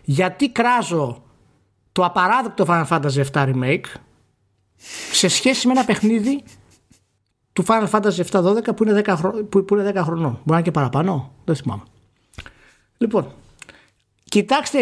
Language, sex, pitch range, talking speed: Greek, male, 140-205 Hz, 130 wpm